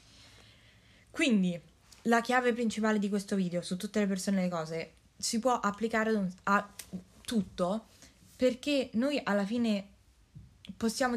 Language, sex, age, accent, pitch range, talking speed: English, female, 20-39, Italian, 185-225 Hz, 130 wpm